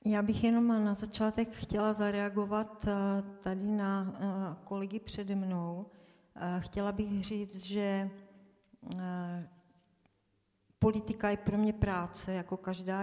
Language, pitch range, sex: Czech, 180-205 Hz, female